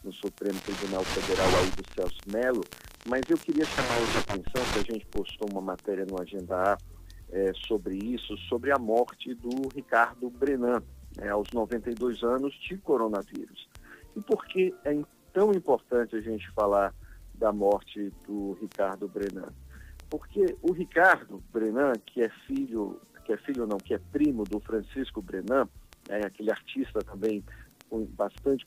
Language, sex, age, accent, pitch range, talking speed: Portuguese, male, 50-69, Brazilian, 100-140 Hz, 155 wpm